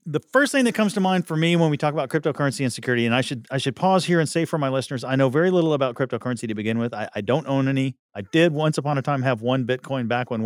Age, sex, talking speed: 40-59, male, 305 wpm